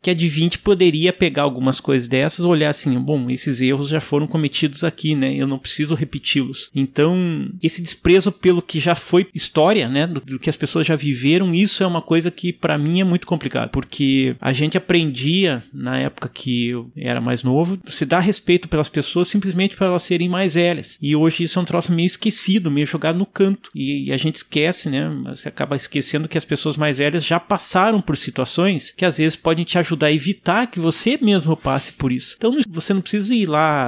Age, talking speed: 30-49, 215 wpm